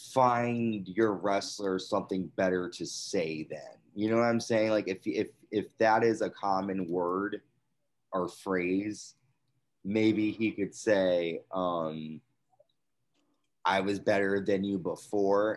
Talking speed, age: 135 wpm, 20-39